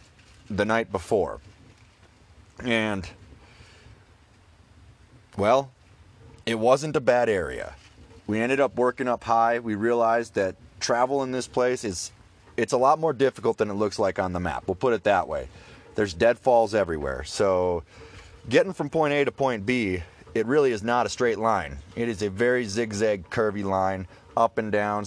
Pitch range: 95-120 Hz